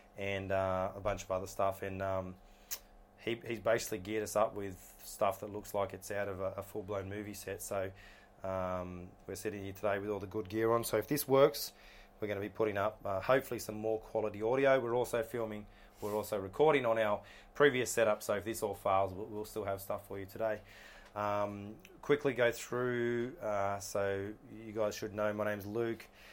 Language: English